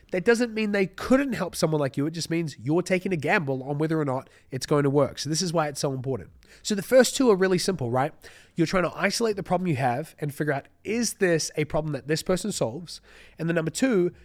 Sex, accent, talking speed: male, Australian, 260 wpm